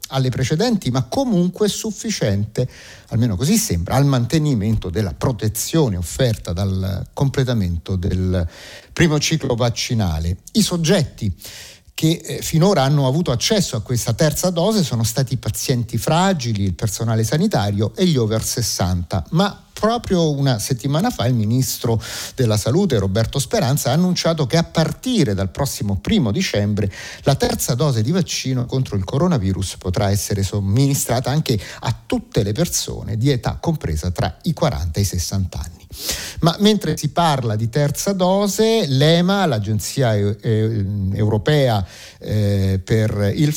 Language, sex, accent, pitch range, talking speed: Italian, male, native, 105-155 Hz, 140 wpm